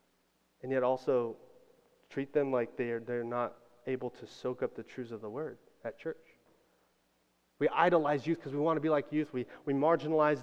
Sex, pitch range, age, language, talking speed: male, 130-170 Hz, 30-49, English, 190 wpm